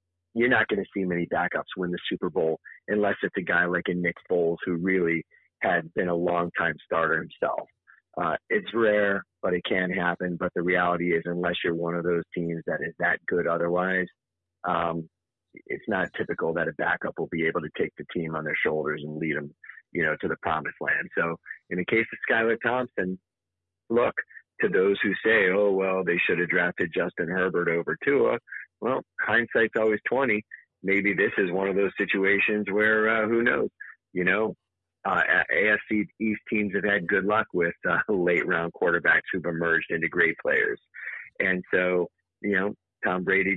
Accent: American